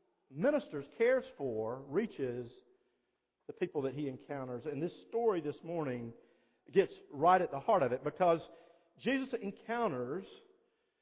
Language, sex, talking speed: English, male, 130 wpm